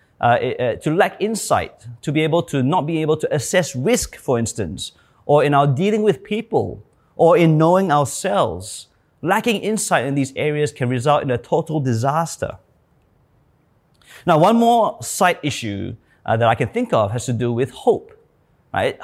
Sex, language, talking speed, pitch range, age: male, English, 170 wpm, 130-175 Hz, 30-49